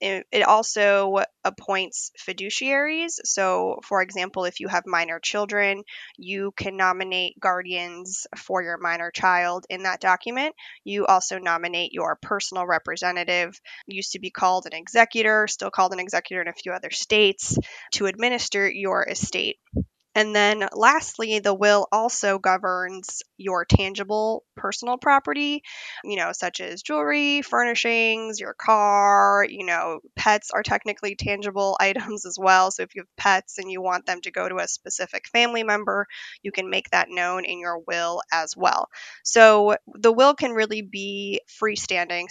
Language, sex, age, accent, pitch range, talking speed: English, female, 10-29, American, 185-220 Hz, 155 wpm